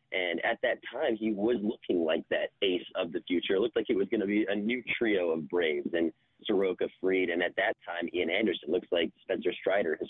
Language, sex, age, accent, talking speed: English, male, 30-49, American, 240 wpm